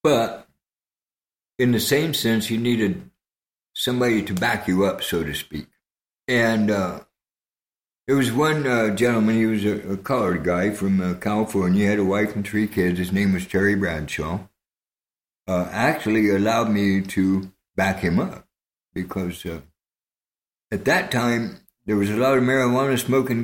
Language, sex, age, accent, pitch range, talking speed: English, male, 60-79, American, 95-120 Hz, 160 wpm